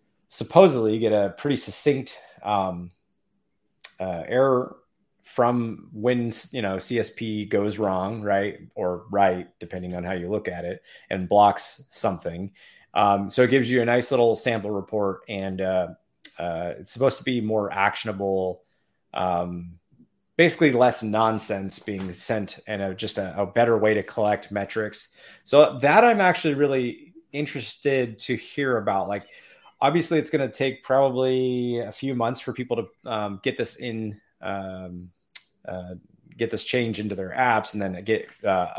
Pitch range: 95-120 Hz